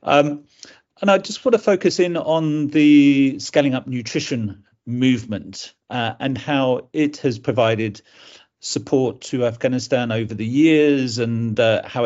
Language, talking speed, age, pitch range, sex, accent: English, 145 wpm, 40-59, 110-135 Hz, male, British